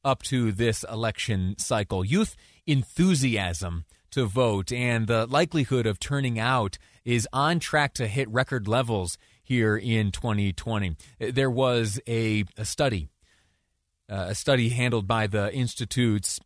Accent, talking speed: American, 135 wpm